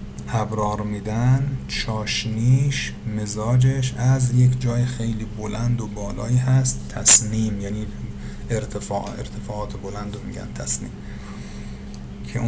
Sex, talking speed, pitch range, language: male, 100 wpm, 105-125 Hz, Persian